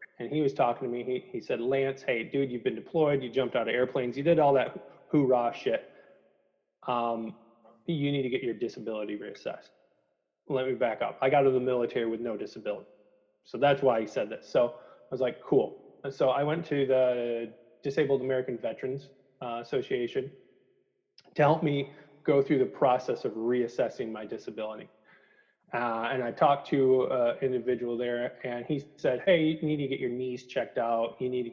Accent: American